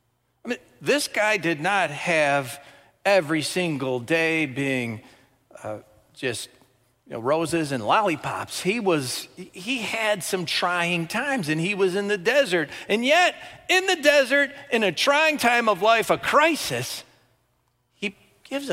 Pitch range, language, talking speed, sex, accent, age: 125-205 Hz, English, 140 wpm, male, American, 40-59